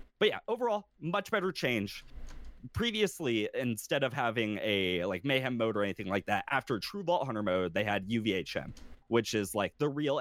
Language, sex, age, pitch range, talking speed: English, male, 20-39, 100-145 Hz, 180 wpm